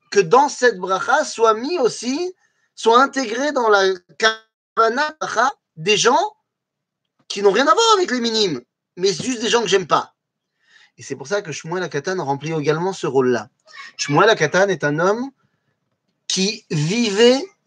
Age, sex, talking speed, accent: 30-49, male, 160 wpm, French